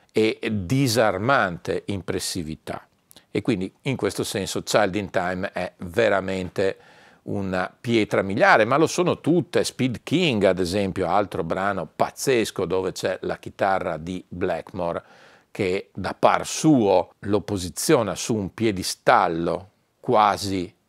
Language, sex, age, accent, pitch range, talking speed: Italian, male, 50-69, native, 85-100 Hz, 125 wpm